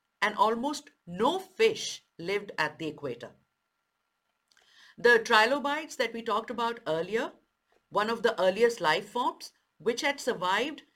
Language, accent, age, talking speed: English, Indian, 50-69, 130 wpm